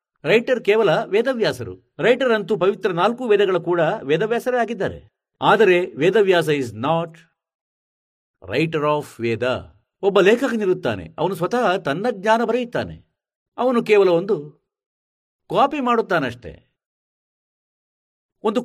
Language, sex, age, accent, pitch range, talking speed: Kannada, male, 50-69, native, 145-220 Hz, 65 wpm